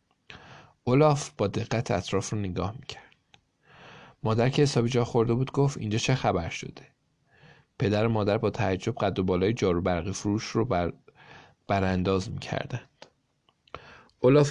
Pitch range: 100-130 Hz